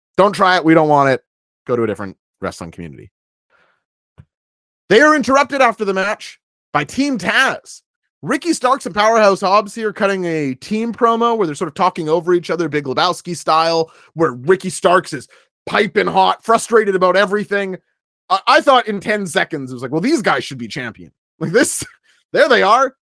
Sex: male